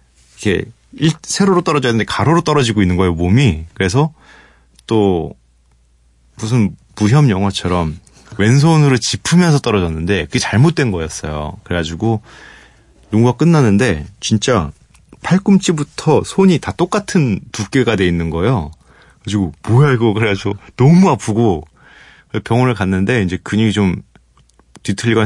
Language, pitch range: Korean, 90-145 Hz